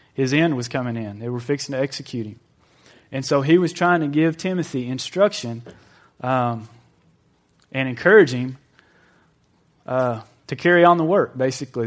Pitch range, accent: 120-150 Hz, American